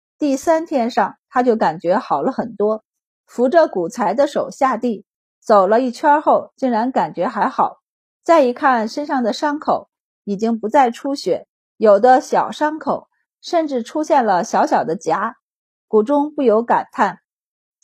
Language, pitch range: Chinese, 215-280 Hz